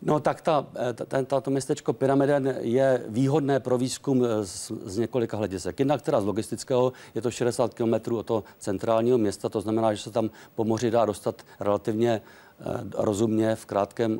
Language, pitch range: Czech, 110-125 Hz